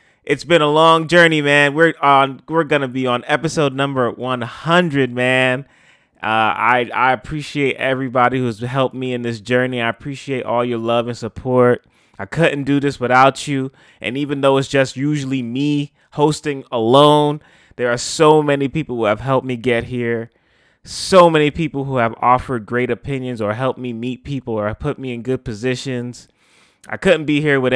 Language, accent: English, American